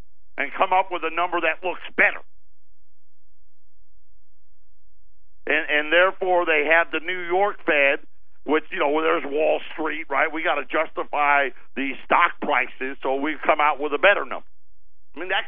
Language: English